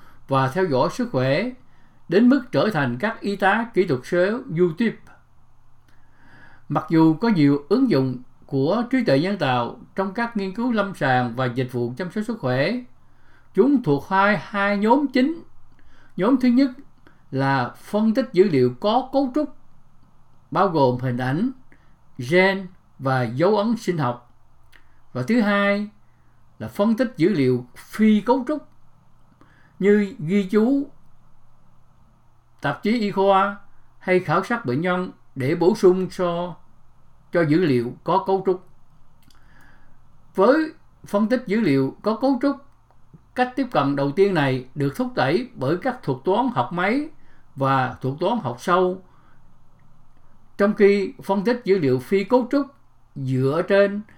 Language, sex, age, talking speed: English, male, 60-79, 155 wpm